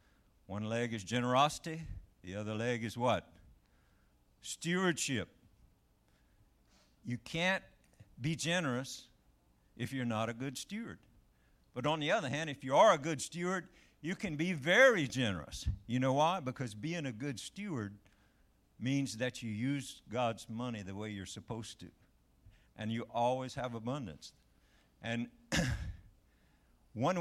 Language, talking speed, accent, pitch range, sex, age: English, 135 wpm, American, 100-140 Hz, male, 60-79